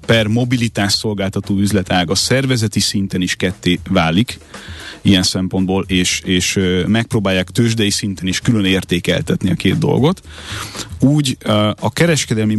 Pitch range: 95-120 Hz